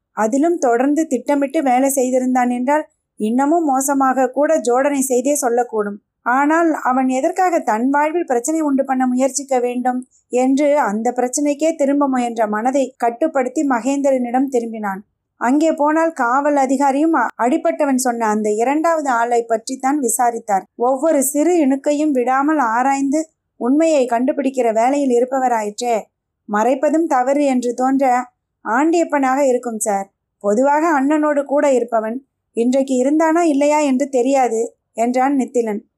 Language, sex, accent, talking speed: Tamil, female, native, 115 wpm